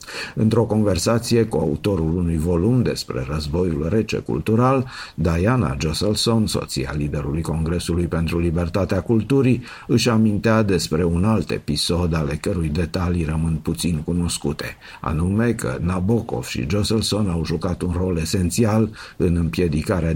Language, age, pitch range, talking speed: Romanian, 50-69, 80-105 Hz, 125 wpm